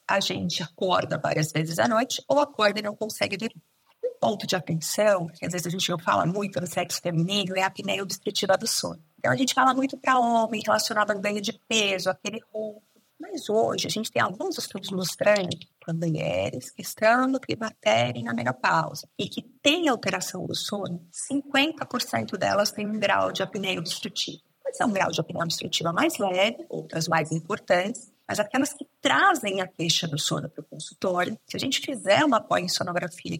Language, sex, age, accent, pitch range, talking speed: Portuguese, female, 30-49, Brazilian, 170-230 Hz, 195 wpm